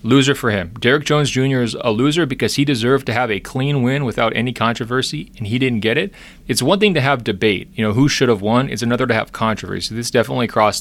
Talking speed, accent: 250 wpm, American